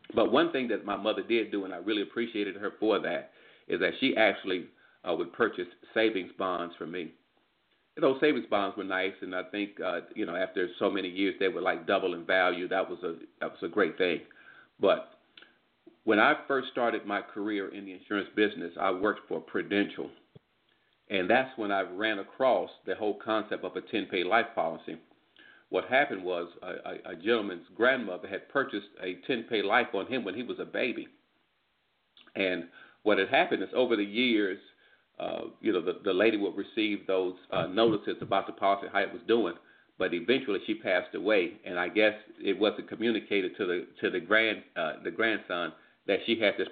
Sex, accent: male, American